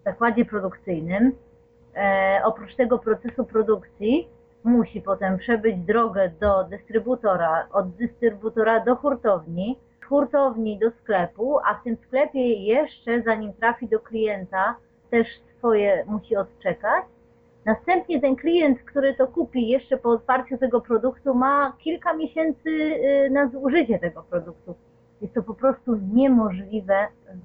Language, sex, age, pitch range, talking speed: Polish, female, 30-49, 185-235 Hz, 125 wpm